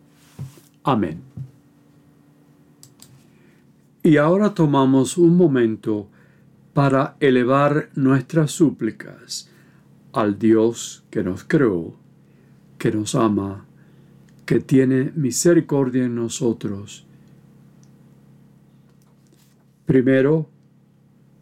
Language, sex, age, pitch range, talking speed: Spanish, male, 50-69, 100-140 Hz, 65 wpm